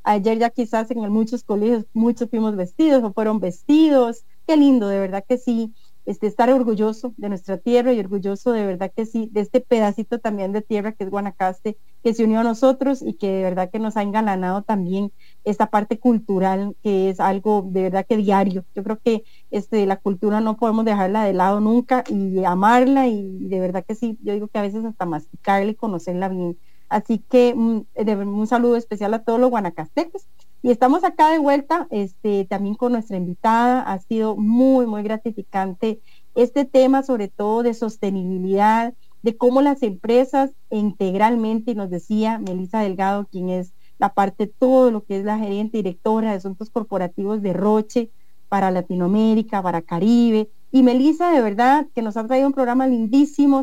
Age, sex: 30-49, female